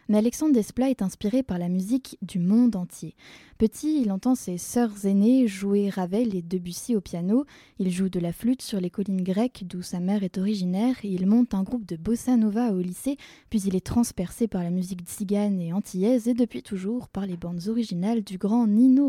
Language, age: French, 20-39